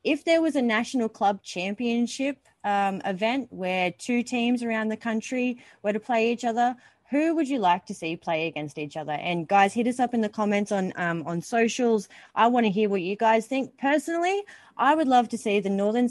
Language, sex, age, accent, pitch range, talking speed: English, female, 20-39, Australian, 175-230 Hz, 215 wpm